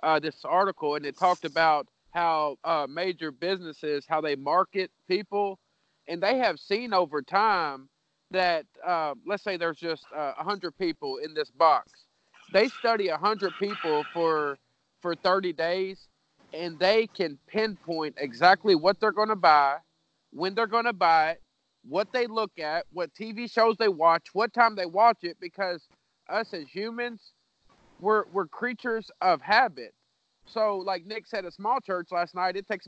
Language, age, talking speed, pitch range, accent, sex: English, 40-59, 165 wpm, 170-215 Hz, American, male